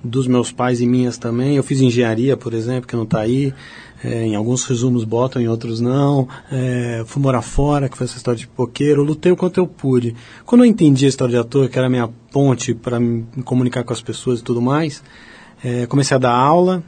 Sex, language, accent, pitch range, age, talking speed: male, Portuguese, Brazilian, 120-140 Hz, 30-49, 230 wpm